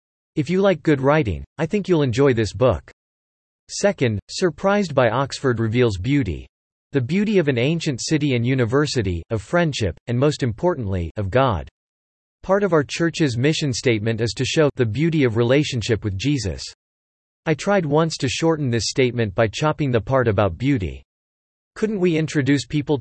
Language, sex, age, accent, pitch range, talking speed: English, male, 40-59, American, 110-150 Hz, 165 wpm